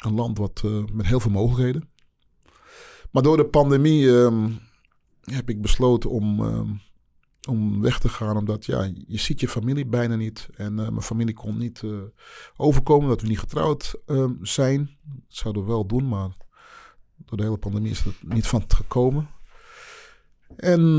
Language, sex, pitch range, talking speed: Dutch, male, 105-125 Hz, 175 wpm